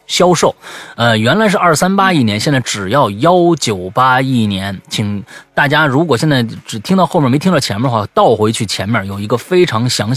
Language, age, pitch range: Chinese, 30-49, 105-145 Hz